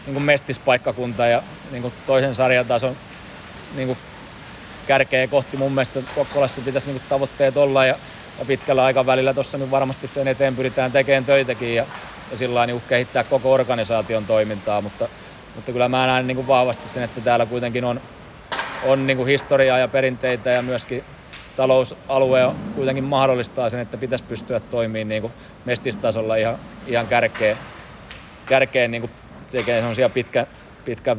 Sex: male